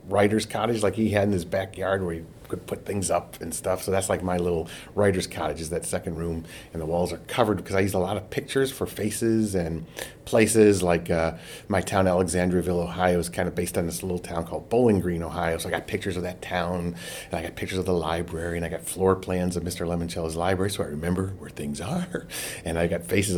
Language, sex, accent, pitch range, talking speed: English, male, American, 90-115 Hz, 240 wpm